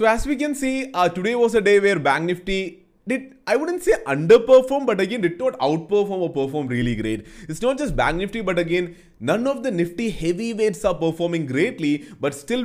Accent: Indian